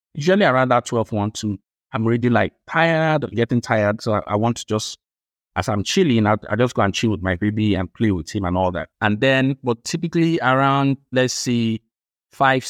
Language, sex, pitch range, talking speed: English, male, 105-130 Hz, 215 wpm